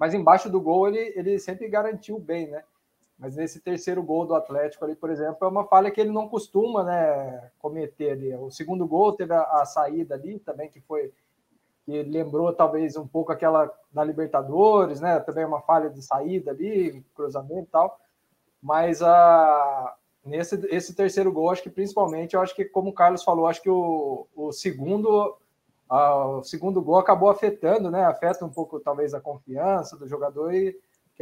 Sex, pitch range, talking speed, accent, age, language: male, 155-195 Hz, 185 wpm, Brazilian, 20-39, Portuguese